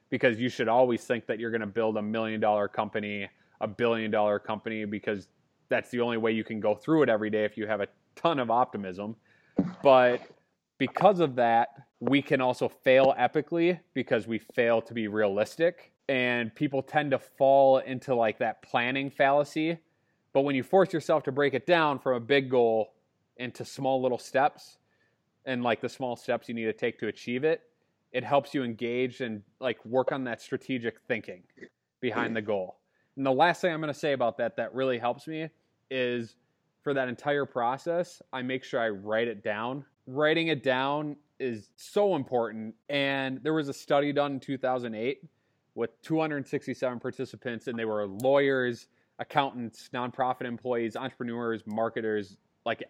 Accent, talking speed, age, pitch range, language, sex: American, 180 wpm, 20-39, 115-140 Hz, English, male